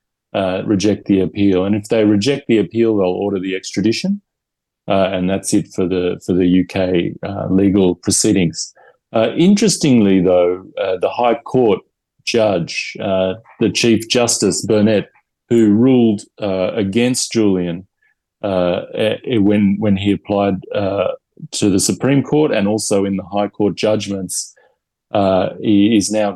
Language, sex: English, male